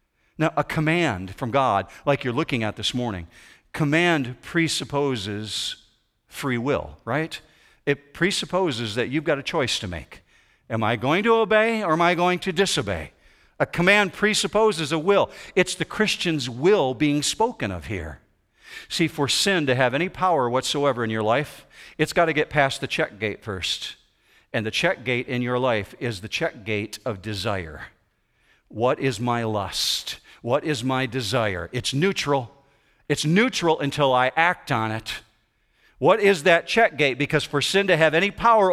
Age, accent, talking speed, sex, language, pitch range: 50-69, American, 170 wpm, male, English, 120-170 Hz